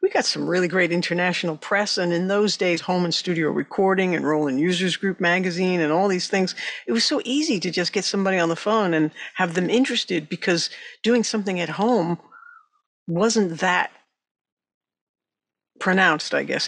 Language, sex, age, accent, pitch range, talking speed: English, female, 60-79, American, 170-205 Hz, 175 wpm